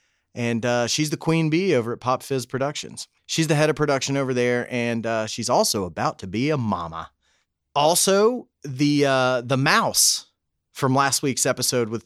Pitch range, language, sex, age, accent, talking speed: 110-135 Hz, English, male, 30-49, American, 185 wpm